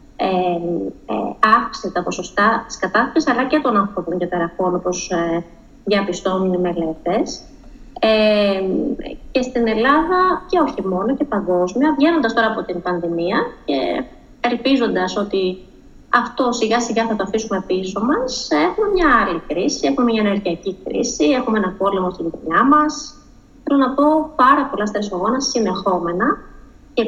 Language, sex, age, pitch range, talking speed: Greek, female, 20-39, 190-285 Hz, 135 wpm